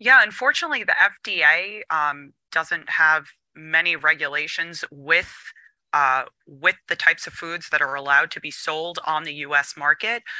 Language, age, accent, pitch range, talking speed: English, 30-49, American, 155-190 Hz, 150 wpm